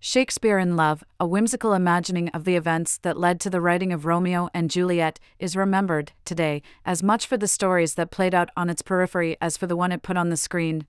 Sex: female